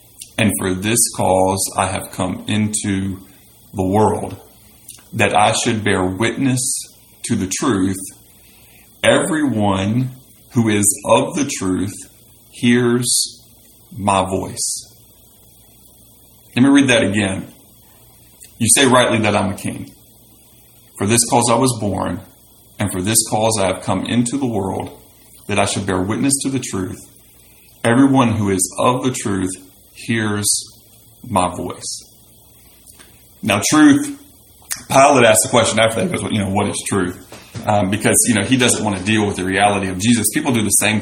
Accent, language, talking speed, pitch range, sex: American, English, 150 wpm, 95-120 Hz, male